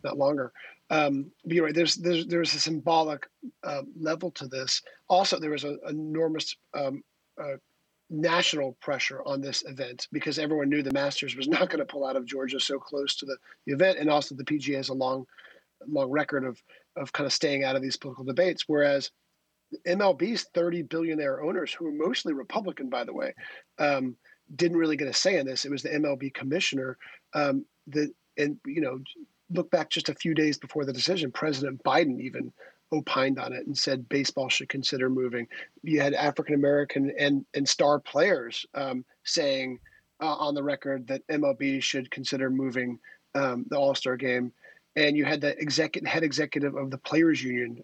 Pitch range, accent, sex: 135-160 Hz, American, male